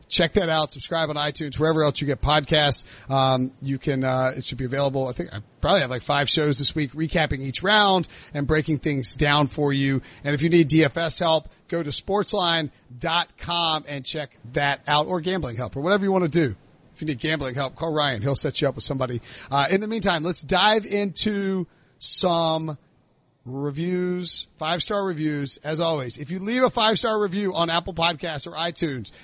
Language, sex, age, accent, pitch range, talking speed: English, male, 40-59, American, 145-185 Hz, 200 wpm